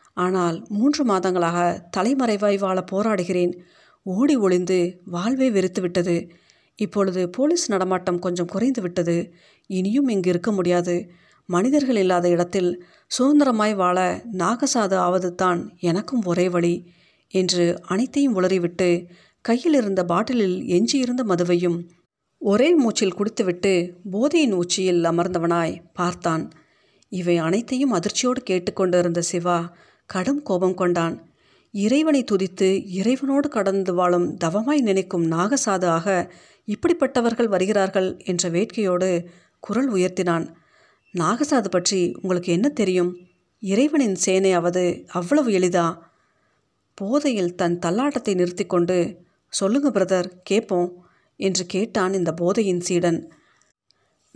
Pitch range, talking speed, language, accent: 175-210 Hz, 100 wpm, Tamil, native